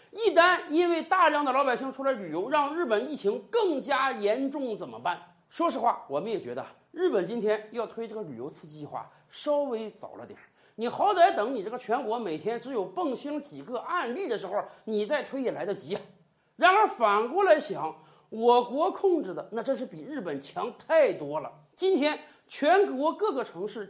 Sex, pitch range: male, 210-325 Hz